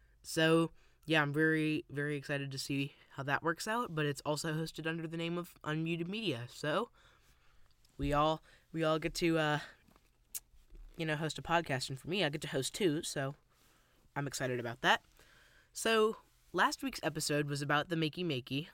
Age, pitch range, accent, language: 10-29, 135-165 Hz, American, English